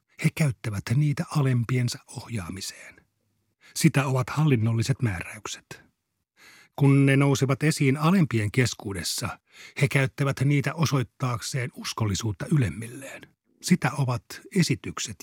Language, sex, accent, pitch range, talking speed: Finnish, male, native, 115-145 Hz, 95 wpm